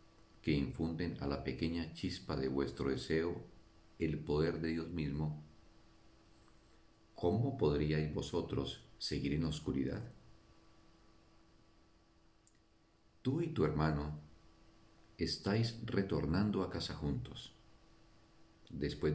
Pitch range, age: 75-110 Hz, 50-69